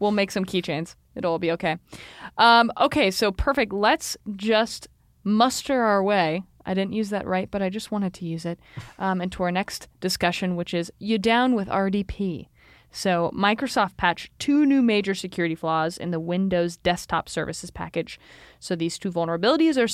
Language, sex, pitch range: English, female, 170-215 Hz